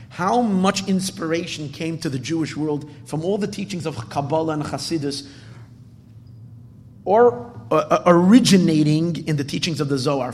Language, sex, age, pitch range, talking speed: English, male, 30-49, 120-175 Hz, 150 wpm